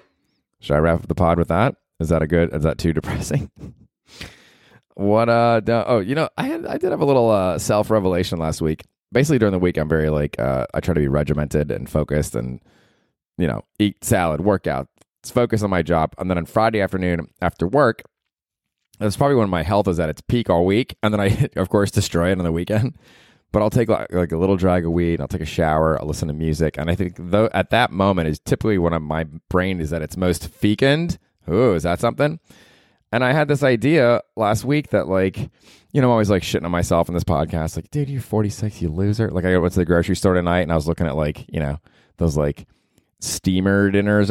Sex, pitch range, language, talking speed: male, 80-105 Hz, English, 230 wpm